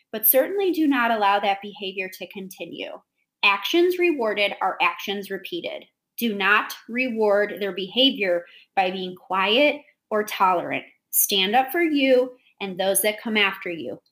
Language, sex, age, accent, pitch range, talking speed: English, female, 30-49, American, 190-265 Hz, 145 wpm